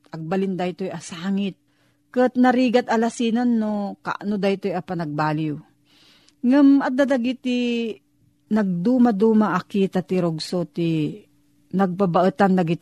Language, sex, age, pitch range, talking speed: Filipino, female, 40-59, 180-225 Hz, 95 wpm